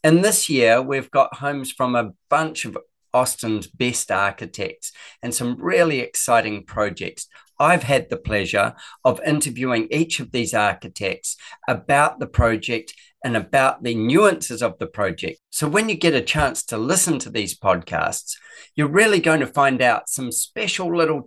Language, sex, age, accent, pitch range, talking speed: English, male, 40-59, Australian, 115-150 Hz, 165 wpm